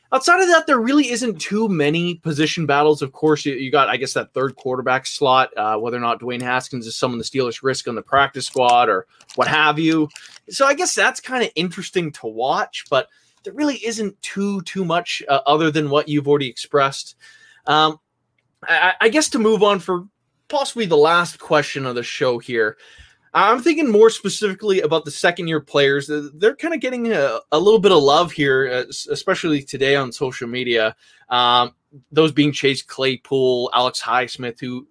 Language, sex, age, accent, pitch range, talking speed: English, male, 20-39, American, 135-185 Hz, 190 wpm